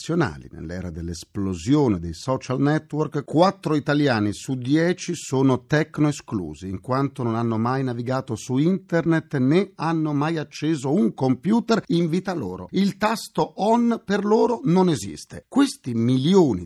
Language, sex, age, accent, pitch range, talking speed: Italian, male, 40-59, native, 100-155 Hz, 135 wpm